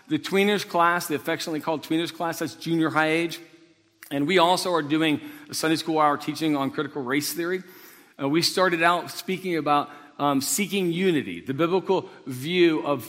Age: 50-69